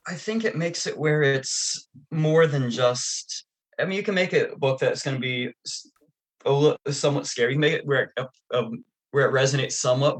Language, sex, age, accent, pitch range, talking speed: English, male, 20-39, American, 115-145 Hz, 180 wpm